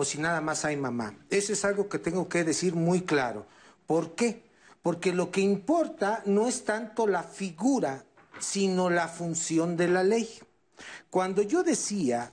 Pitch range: 165-200 Hz